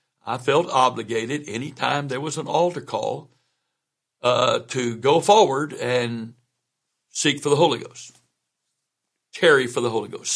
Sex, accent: male, American